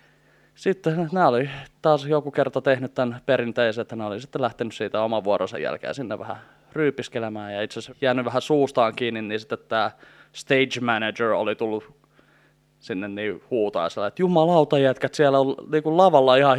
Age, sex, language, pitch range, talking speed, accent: 20-39, male, Finnish, 115-145 Hz, 165 wpm, native